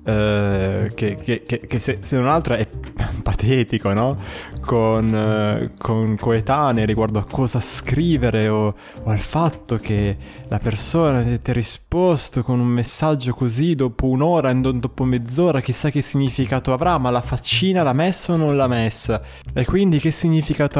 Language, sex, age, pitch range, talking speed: Italian, male, 20-39, 110-150 Hz, 160 wpm